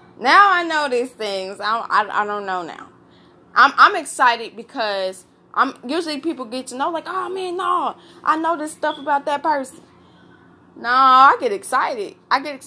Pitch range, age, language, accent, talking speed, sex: 210-290 Hz, 20-39, English, American, 185 wpm, female